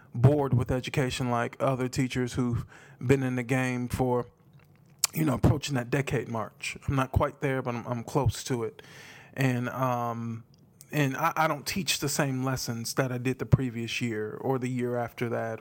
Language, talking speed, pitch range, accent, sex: English, 190 wpm, 120-140 Hz, American, male